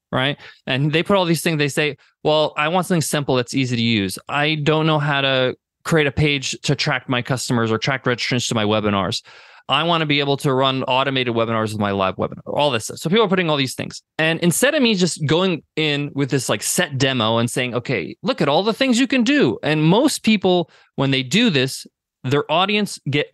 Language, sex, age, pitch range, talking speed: English, male, 20-39, 130-175 Hz, 235 wpm